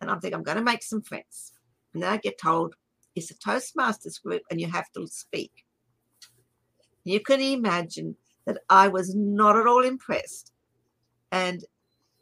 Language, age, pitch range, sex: English, 60-79, 185-240 Hz, female